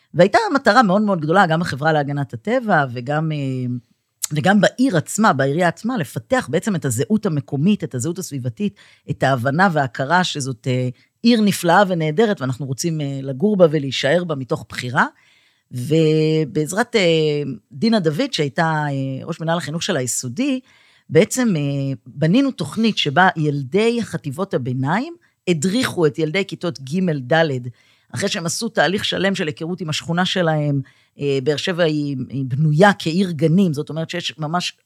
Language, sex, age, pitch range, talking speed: Hebrew, female, 50-69, 145-190 Hz, 140 wpm